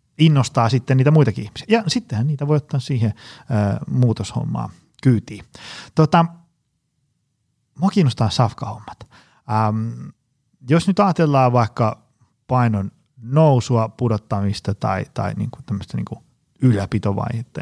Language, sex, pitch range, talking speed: Finnish, male, 110-140 Hz, 110 wpm